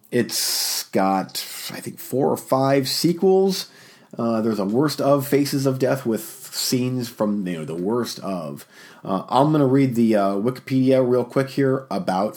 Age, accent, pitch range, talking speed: 40-59, American, 110-135 Hz, 175 wpm